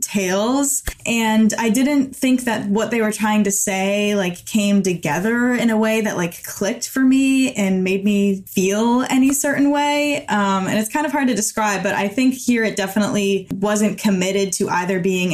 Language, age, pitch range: English, 10-29, 190-225 Hz